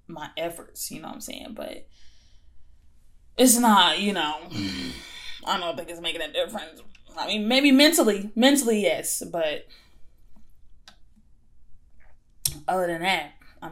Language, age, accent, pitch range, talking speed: English, 10-29, American, 165-225 Hz, 130 wpm